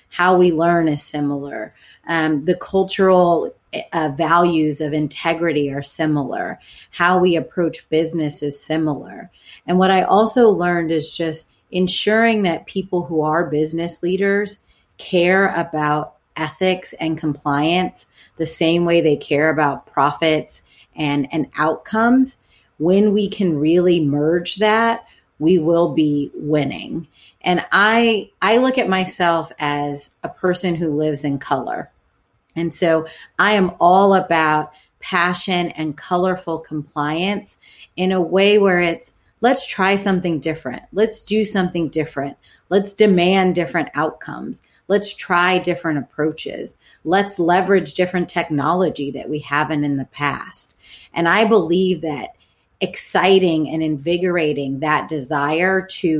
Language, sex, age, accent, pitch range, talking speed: English, female, 30-49, American, 155-185 Hz, 130 wpm